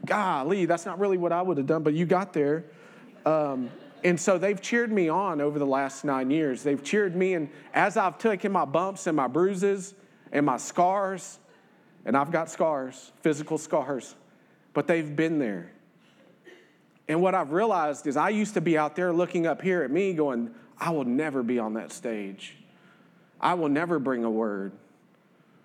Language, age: English, 40-59